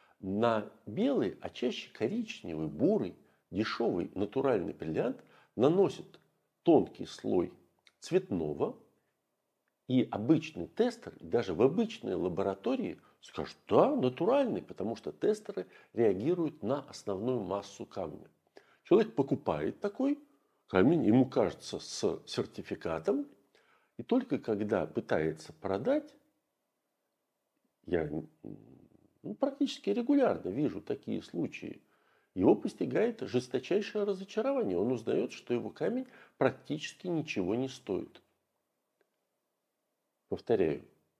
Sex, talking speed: male, 95 wpm